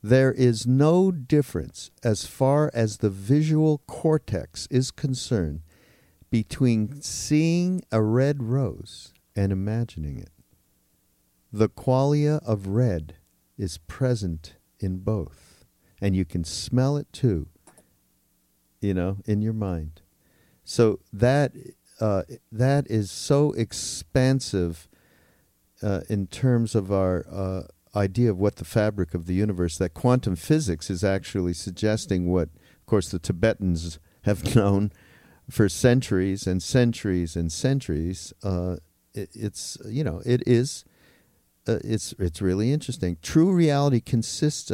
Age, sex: 50-69, male